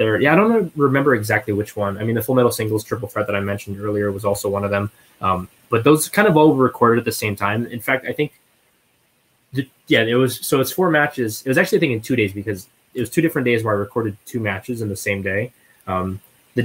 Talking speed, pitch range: 265 wpm, 100-125 Hz